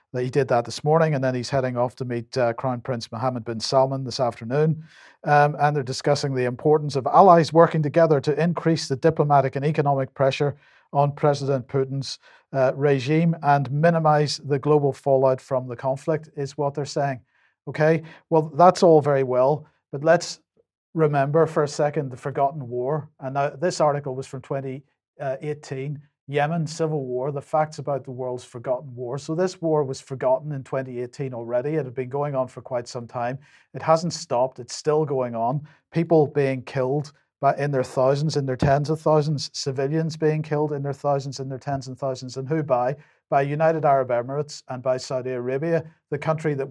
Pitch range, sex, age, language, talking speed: 130-155 Hz, male, 50-69, English, 190 wpm